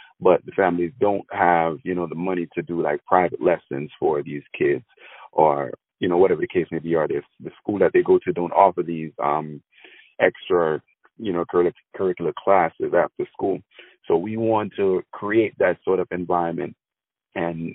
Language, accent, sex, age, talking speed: English, American, male, 30-49, 175 wpm